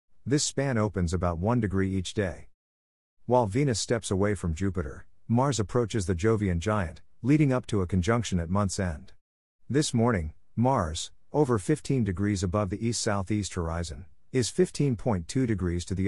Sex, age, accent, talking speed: male, 50-69, American, 160 wpm